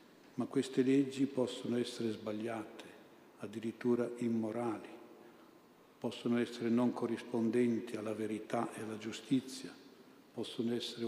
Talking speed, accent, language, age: 105 wpm, native, Italian, 50-69